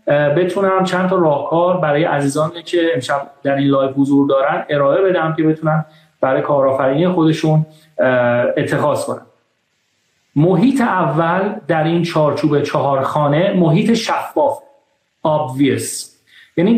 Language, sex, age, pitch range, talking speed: Persian, male, 40-59, 150-190 Hz, 115 wpm